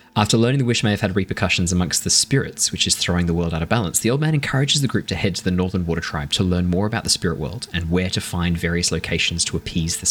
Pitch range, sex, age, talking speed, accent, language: 85-110 Hz, male, 20-39, 285 wpm, Australian, English